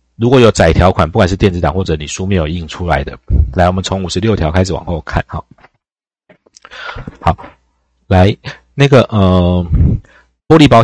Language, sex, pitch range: Chinese, male, 85-110 Hz